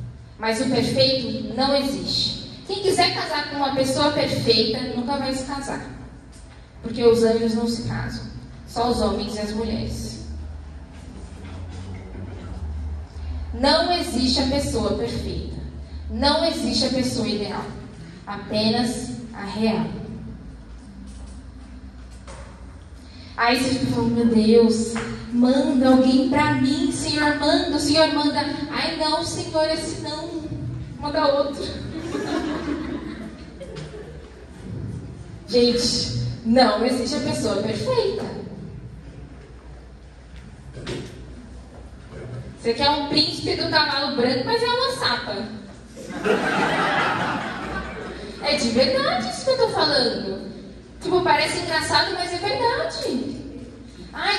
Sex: female